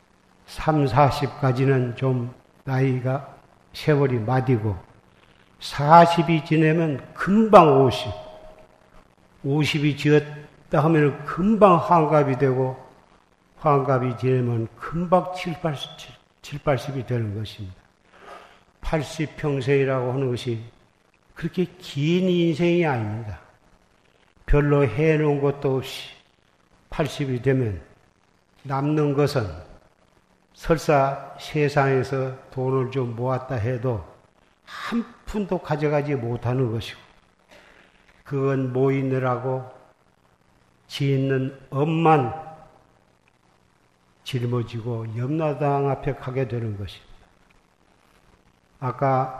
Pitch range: 115-150 Hz